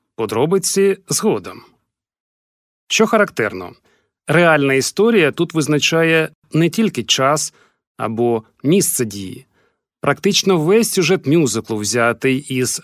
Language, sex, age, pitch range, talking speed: Ukrainian, male, 40-59, 130-195 Hz, 95 wpm